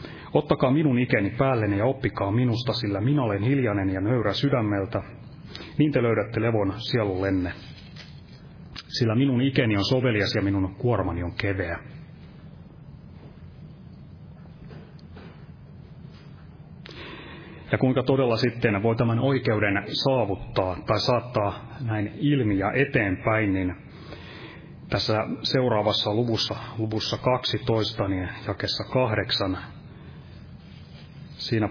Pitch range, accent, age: 100-125 Hz, native, 30-49